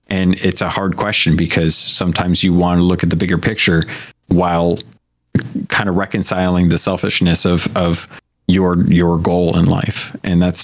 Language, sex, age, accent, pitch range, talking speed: English, male, 30-49, American, 85-95 Hz, 170 wpm